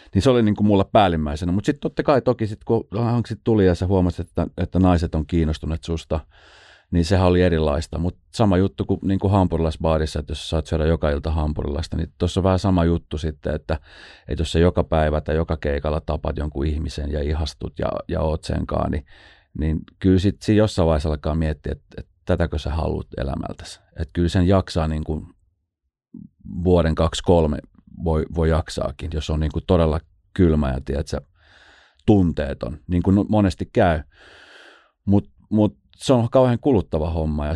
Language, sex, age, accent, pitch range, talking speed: Finnish, male, 30-49, native, 80-95 Hz, 175 wpm